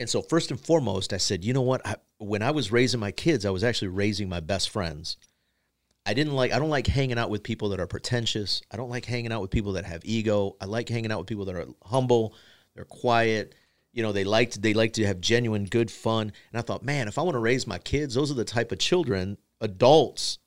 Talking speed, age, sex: 250 wpm, 40-59, male